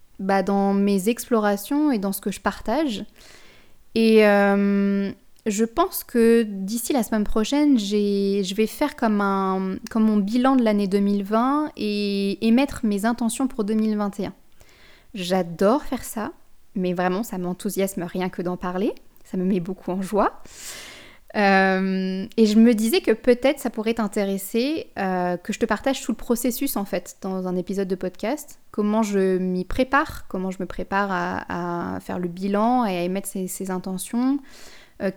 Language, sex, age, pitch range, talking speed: French, female, 20-39, 195-235 Hz, 170 wpm